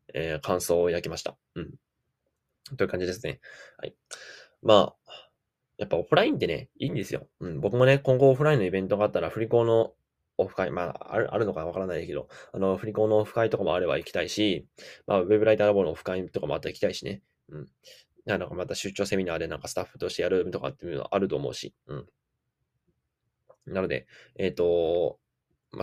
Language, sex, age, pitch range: Japanese, male, 10-29, 95-135 Hz